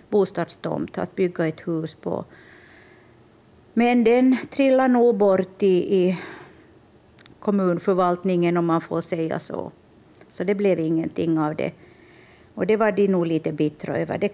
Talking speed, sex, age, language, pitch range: 140 wpm, female, 50-69, Swedish, 165-200 Hz